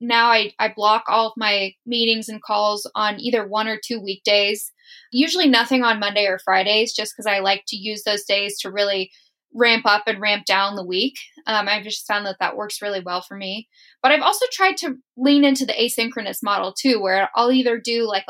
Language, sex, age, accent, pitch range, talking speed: English, female, 10-29, American, 205-250 Hz, 220 wpm